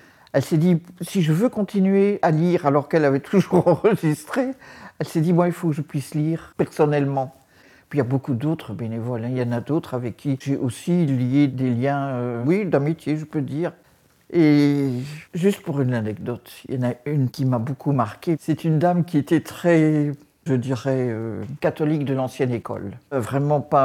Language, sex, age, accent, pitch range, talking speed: French, male, 50-69, French, 135-180 Hz, 200 wpm